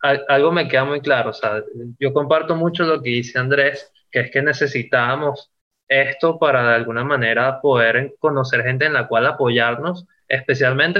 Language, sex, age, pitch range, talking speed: Spanish, male, 20-39, 130-170 Hz, 170 wpm